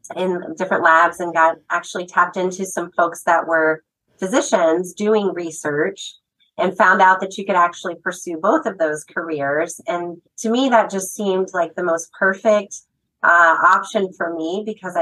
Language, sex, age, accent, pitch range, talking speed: English, female, 30-49, American, 160-195 Hz, 170 wpm